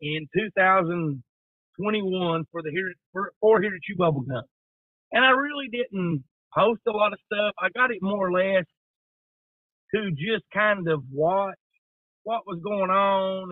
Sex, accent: male, American